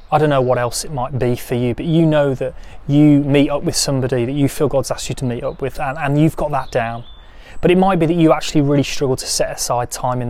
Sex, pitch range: male, 120-150 Hz